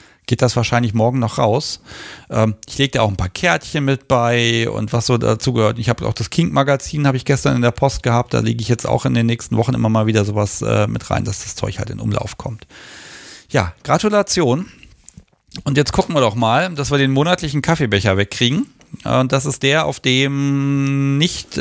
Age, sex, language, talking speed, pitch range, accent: 40-59, male, German, 210 wpm, 115-140 Hz, German